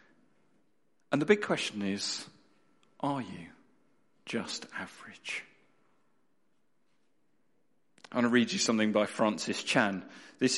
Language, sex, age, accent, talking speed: English, male, 50-69, British, 110 wpm